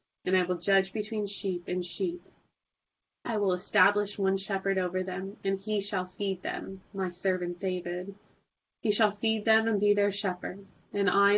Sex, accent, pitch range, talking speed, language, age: female, American, 180-205 Hz, 175 wpm, English, 20-39